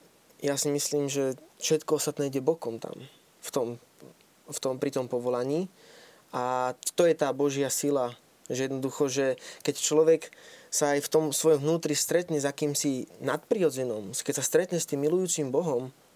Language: Slovak